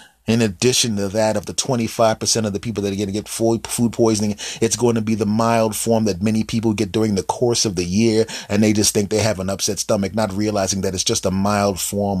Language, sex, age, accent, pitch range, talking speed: English, male, 30-49, American, 95-120 Hz, 250 wpm